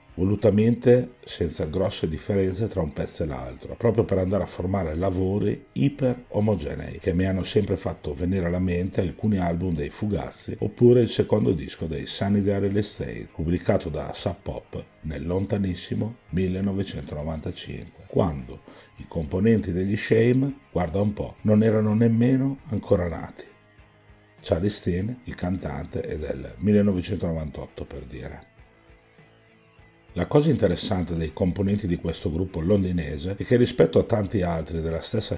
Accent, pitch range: native, 85-105 Hz